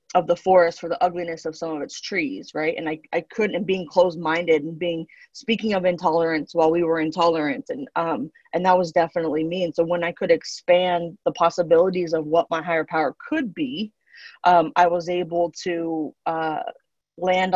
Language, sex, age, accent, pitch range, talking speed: English, female, 20-39, American, 165-185 Hz, 200 wpm